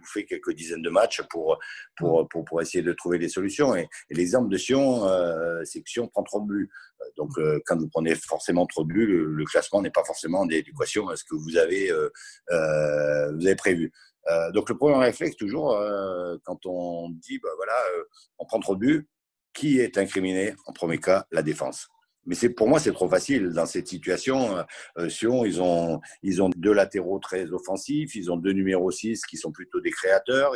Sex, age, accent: male, 50-69, French